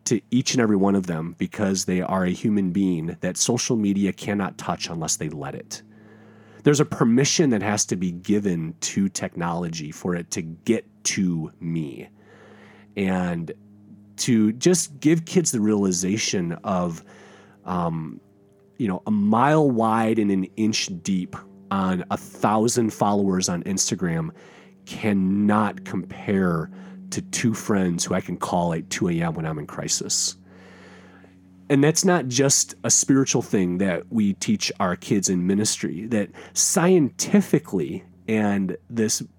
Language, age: English, 30-49